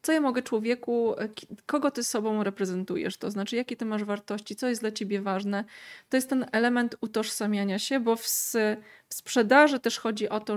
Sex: female